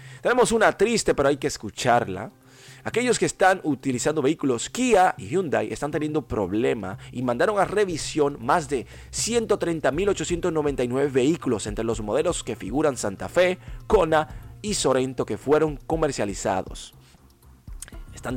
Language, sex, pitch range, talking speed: Spanish, male, 100-150 Hz, 130 wpm